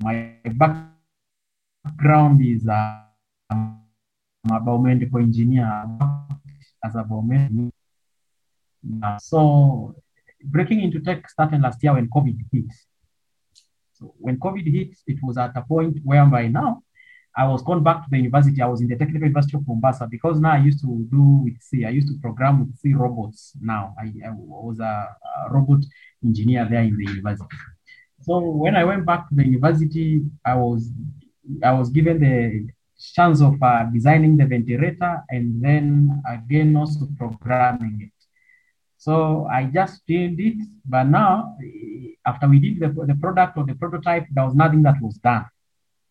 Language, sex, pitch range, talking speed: English, male, 120-155 Hz, 160 wpm